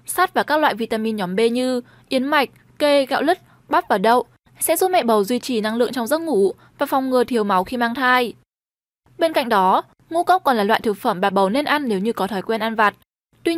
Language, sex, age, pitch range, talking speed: Vietnamese, female, 10-29, 225-295 Hz, 250 wpm